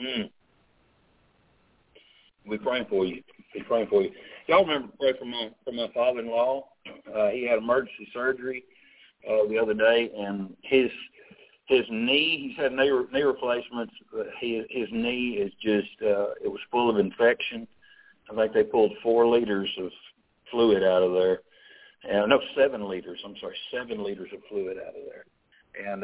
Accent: American